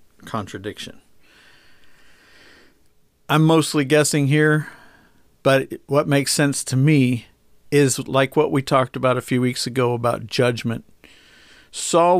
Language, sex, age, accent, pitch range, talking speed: English, male, 50-69, American, 115-140 Hz, 120 wpm